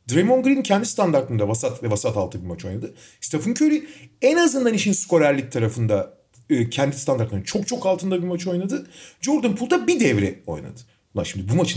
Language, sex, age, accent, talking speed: Turkish, male, 40-59, native, 180 wpm